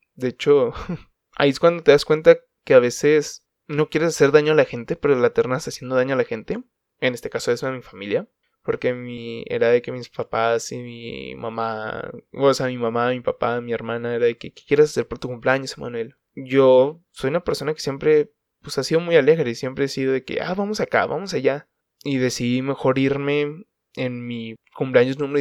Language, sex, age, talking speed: Spanish, male, 20-39, 215 wpm